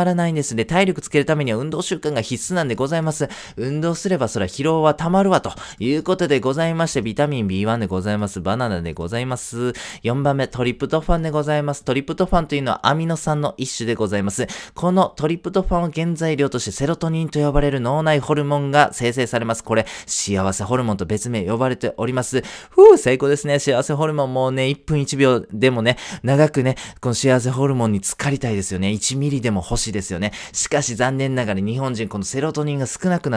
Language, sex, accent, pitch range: Japanese, male, native, 105-150 Hz